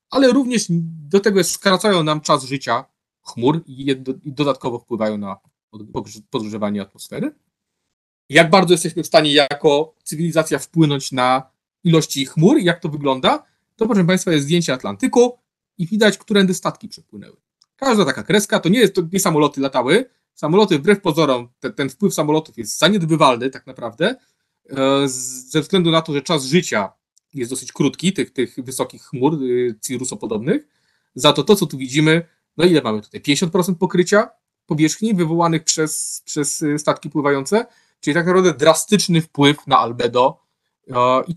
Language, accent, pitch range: Polish, native, 135-185 Hz